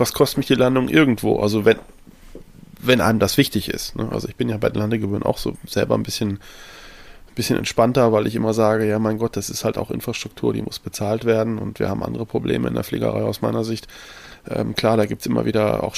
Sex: male